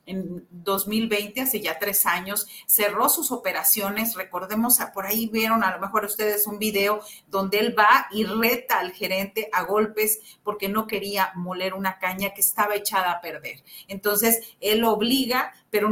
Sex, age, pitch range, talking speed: female, 40-59, 190-230 Hz, 160 wpm